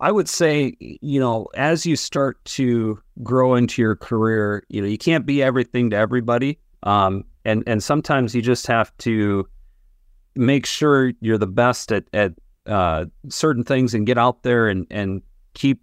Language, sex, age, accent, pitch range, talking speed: English, male, 40-59, American, 95-120 Hz, 175 wpm